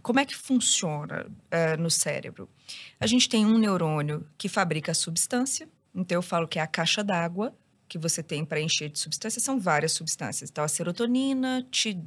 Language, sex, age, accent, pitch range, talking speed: Portuguese, female, 20-39, Brazilian, 170-240 Hz, 185 wpm